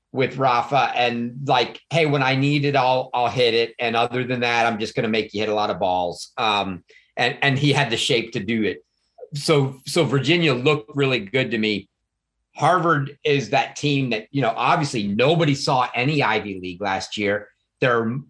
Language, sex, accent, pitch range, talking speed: English, male, American, 120-145 Hz, 205 wpm